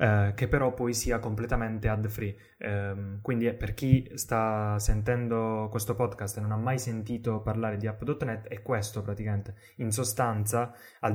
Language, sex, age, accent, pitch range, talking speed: Italian, male, 10-29, native, 110-130 Hz, 165 wpm